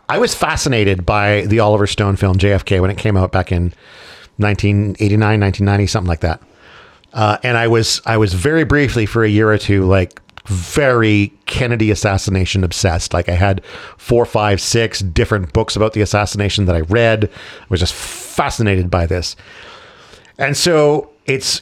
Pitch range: 100-125 Hz